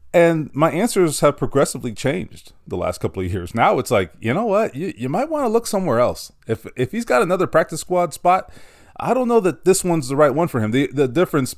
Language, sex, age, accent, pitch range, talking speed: English, male, 30-49, American, 95-125 Hz, 245 wpm